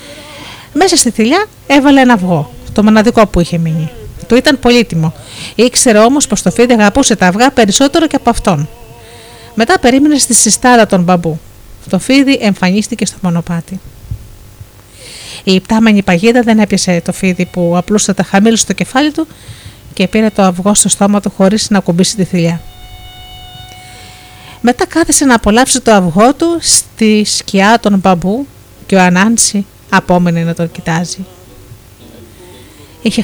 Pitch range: 165-245 Hz